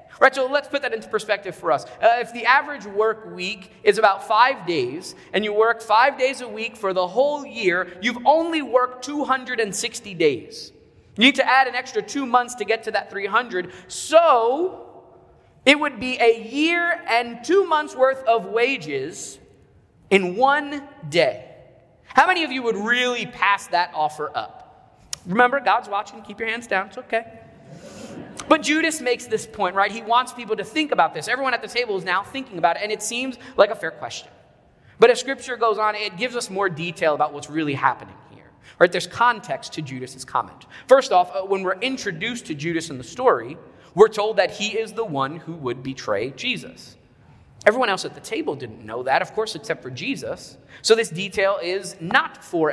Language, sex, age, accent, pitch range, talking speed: English, male, 30-49, American, 190-260 Hz, 195 wpm